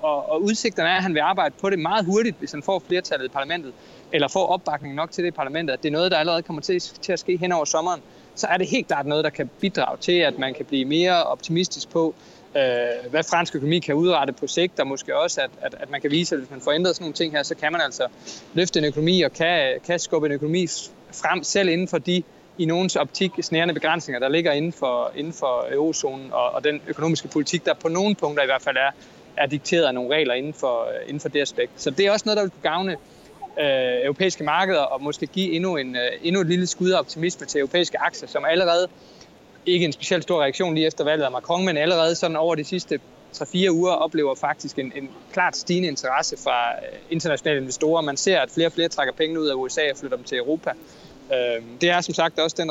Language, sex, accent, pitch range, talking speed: Danish, male, native, 150-180 Hz, 235 wpm